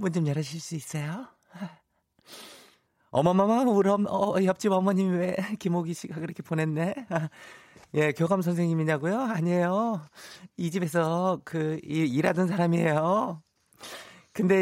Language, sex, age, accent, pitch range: Korean, male, 30-49, native, 115-180 Hz